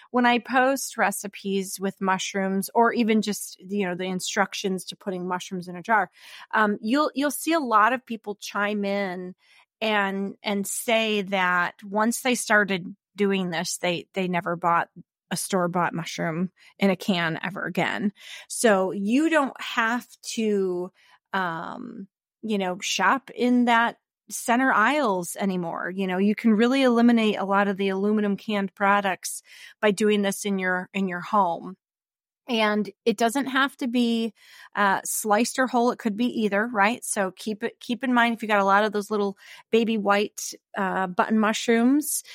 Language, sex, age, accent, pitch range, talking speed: English, female, 30-49, American, 195-230 Hz, 170 wpm